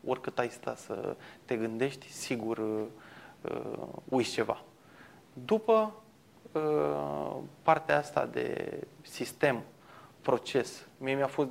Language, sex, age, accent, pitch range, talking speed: Romanian, male, 20-39, native, 120-145 Hz, 95 wpm